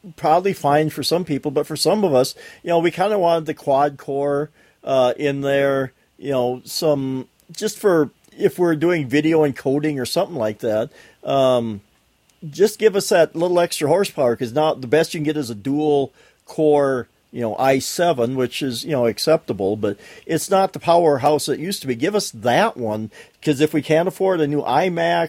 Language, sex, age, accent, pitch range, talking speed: English, male, 40-59, American, 125-155 Hz, 200 wpm